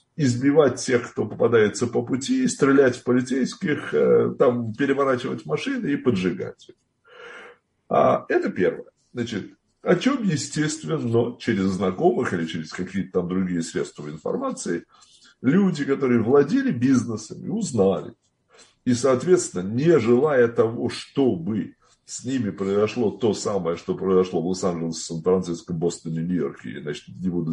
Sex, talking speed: male, 125 wpm